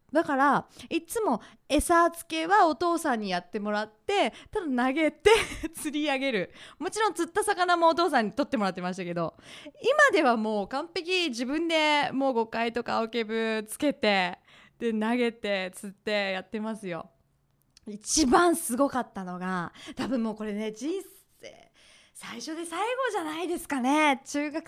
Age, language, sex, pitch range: 20-39, Japanese, female, 220-335 Hz